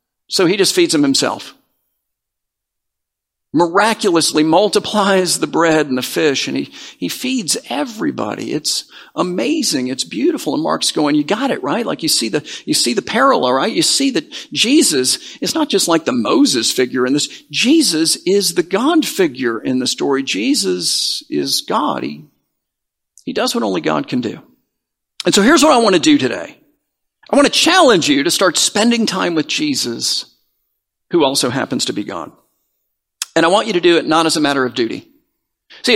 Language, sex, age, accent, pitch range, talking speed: English, male, 50-69, American, 175-300 Hz, 185 wpm